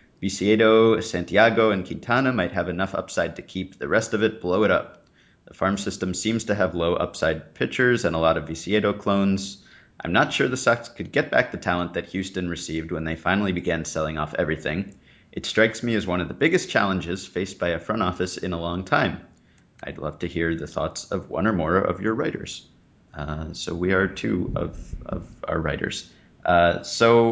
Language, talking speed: English, 205 wpm